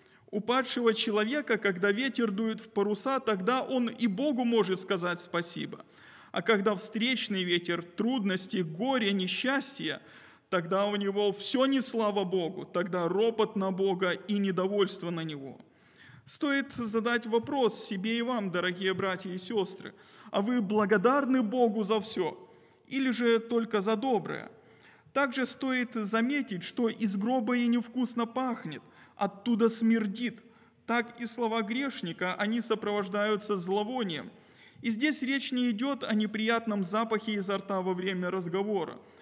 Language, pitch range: Russian, 200-235 Hz